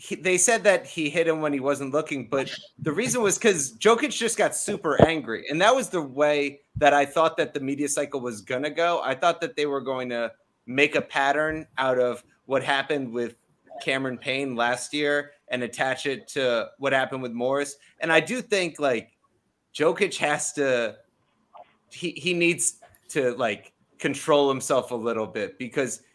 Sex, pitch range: male, 130-170 Hz